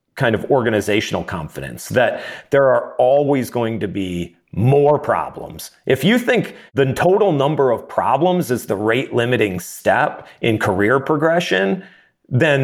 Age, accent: 40-59, American